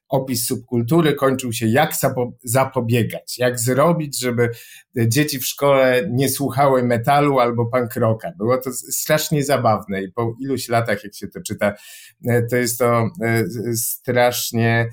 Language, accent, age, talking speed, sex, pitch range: Polish, native, 50-69, 135 wpm, male, 115-135 Hz